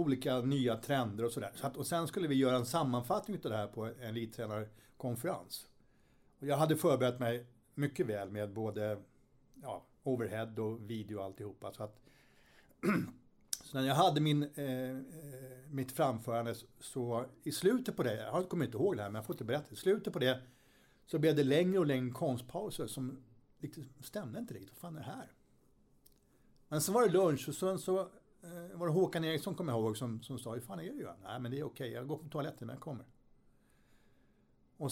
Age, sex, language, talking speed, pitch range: 60-79, male, English, 200 wpm, 115-150 Hz